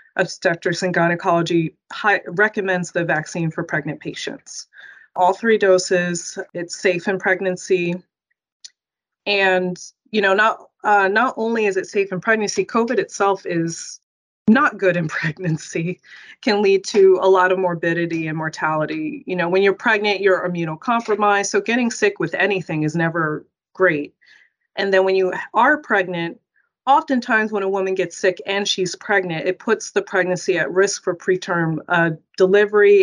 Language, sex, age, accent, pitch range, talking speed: English, female, 30-49, American, 170-205 Hz, 155 wpm